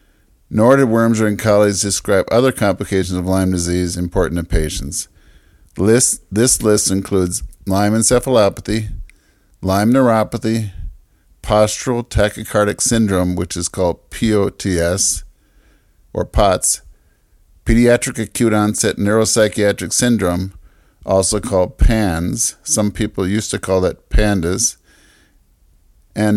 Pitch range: 90-110 Hz